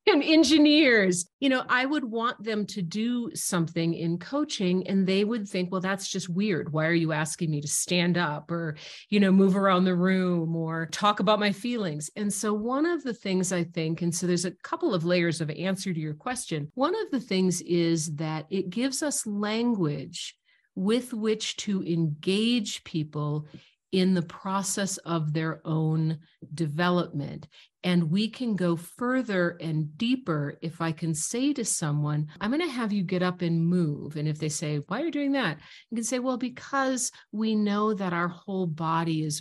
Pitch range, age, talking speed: 160-210 Hz, 40-59, 190 wpm